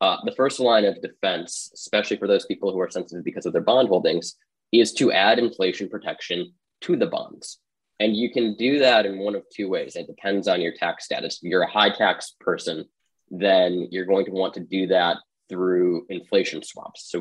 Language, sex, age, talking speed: English, male, 20-39, 210 wpm